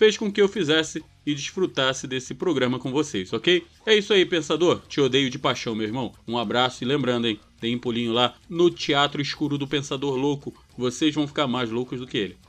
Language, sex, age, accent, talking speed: Portuguese, male, 30-49, Brazilian, 215 wpm